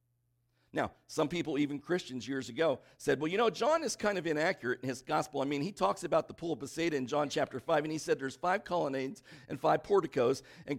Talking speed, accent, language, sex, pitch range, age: 235 wpm, American, English, male, 120-150 Hz, 50-69